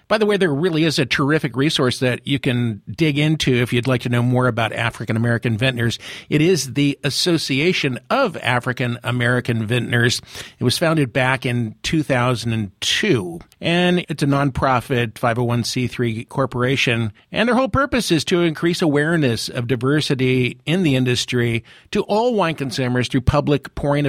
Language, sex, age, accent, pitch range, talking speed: English, male, 50-69, American, 125-155 Hz, 155 wpm